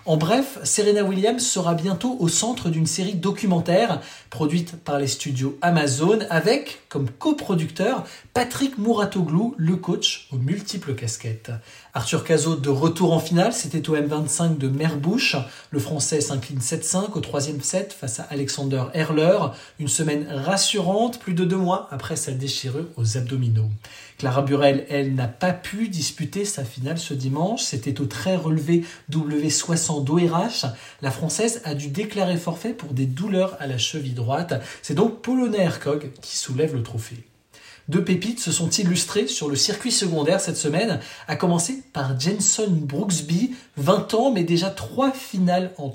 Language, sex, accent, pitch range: French, male, French, 140-200 Hz